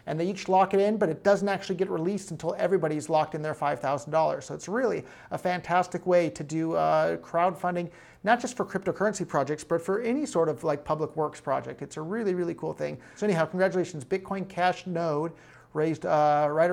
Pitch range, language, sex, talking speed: 150-180 Hz, English, male, 205 wpm